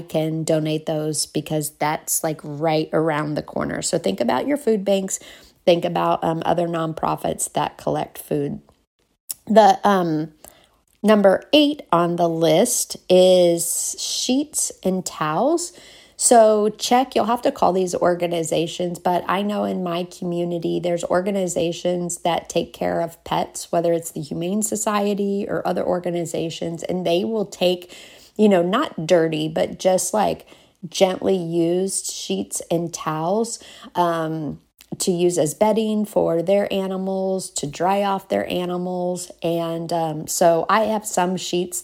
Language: English